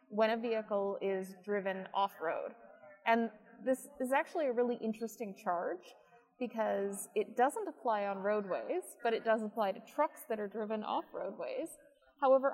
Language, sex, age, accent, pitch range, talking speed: English, female, 20-39, American, 200-250 Hz, 150 wpm